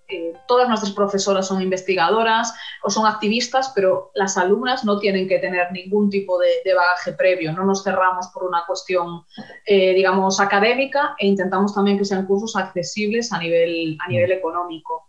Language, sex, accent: Spanish, female, Spanish